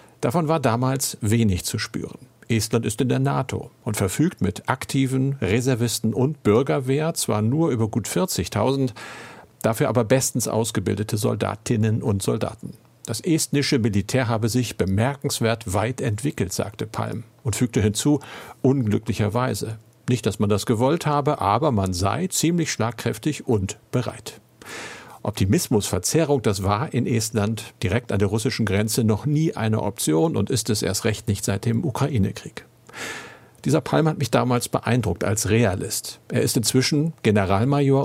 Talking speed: 145 wpm